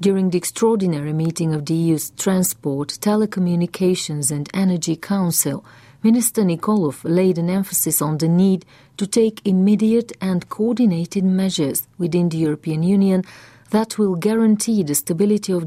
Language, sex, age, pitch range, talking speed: English, female, 40-59, 155-195 Hz, 140 wpm